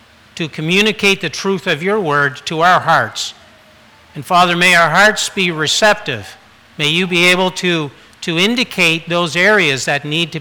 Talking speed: 165 wpm